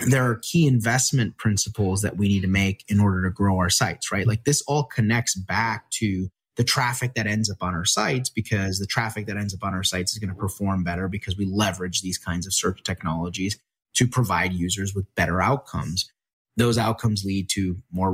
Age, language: 30-49, English